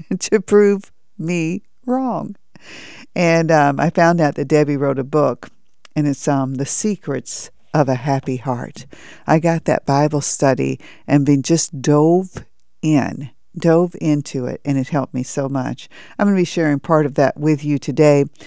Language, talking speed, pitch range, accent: English, 170 wpm, 135-155 Hz, American